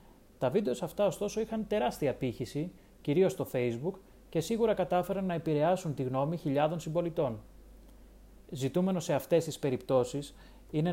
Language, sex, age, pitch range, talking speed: Greek, male, 30-49, 135-175 Hz, 135 wpm